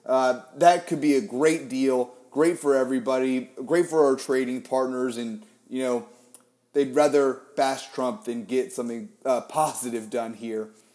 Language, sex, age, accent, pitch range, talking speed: English, male, 30-49, American, 125-165 Hz, 160 wpm